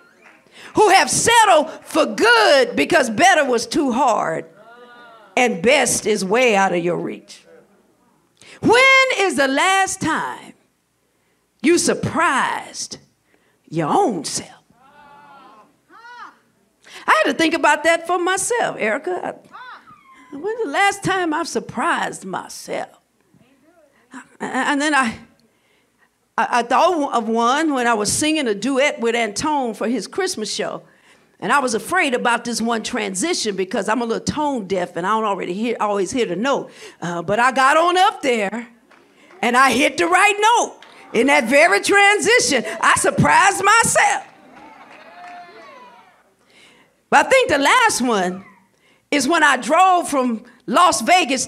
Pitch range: 235-355 Hz